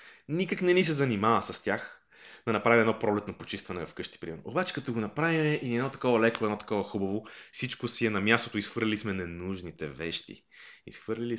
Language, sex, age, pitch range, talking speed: Bulgarian, male, 20-39, 95-130 Hz, 180 wpm